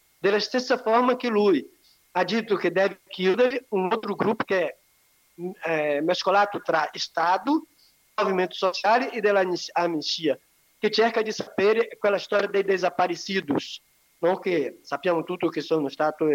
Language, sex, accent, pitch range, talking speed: Italian, male, Brazilian, 165-215 Hz, 130 wpm